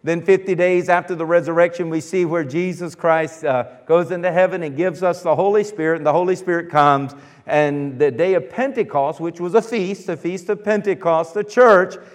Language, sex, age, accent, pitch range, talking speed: English, male, 50-69, American, 150-185 Hz, 205 wpm